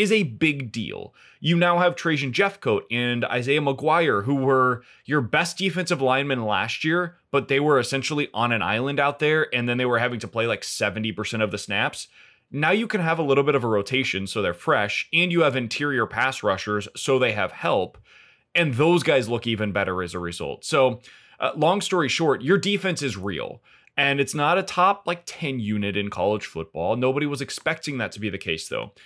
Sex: male